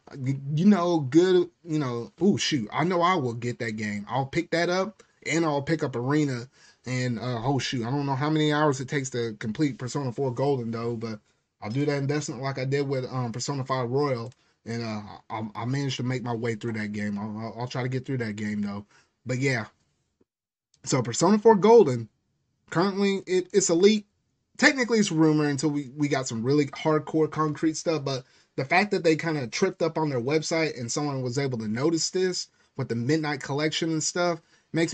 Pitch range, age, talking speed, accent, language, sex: 125-165 Hz, 30-49, 215 wpm, American, English, male